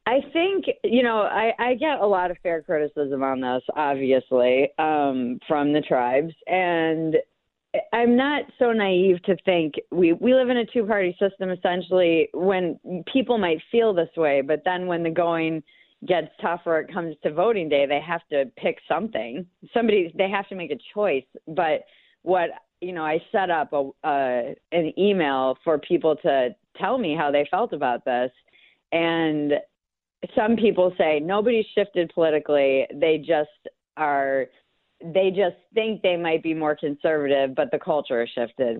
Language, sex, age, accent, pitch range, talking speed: English, female, 30-49, American, 145-190 Hz, 165 wpm